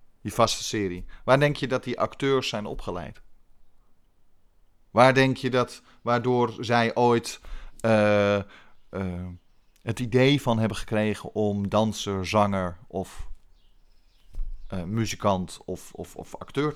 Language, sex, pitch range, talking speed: Dutch, male, 100-140 Hz, 125 wpm